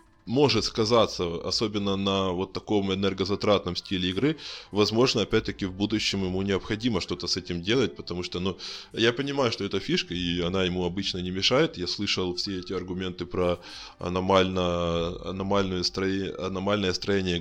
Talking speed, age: 145 wpm, 20-39